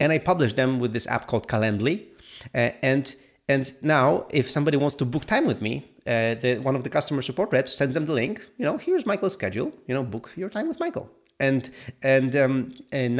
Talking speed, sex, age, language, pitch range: 225 wpm, male, 30-49, English, 110-140 Hz